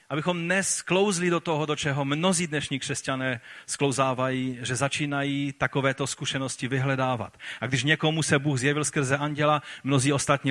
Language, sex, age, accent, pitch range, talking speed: Czech, male, 40-59, native, 110-140 Hz, 145 wpm